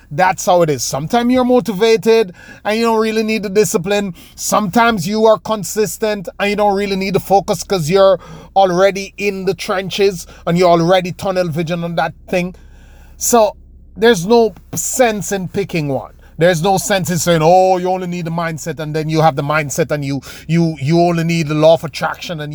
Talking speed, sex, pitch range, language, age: 195 wpm, male, 140-195 Hz, English, 30-49